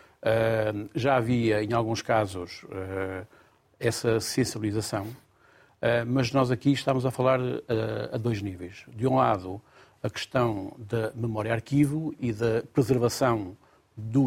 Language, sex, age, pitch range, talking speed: Portuguese, male, 50-69, 110-135 Hz, 130 wpm